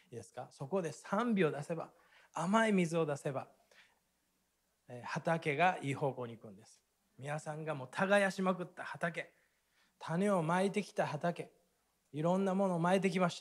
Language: Japanese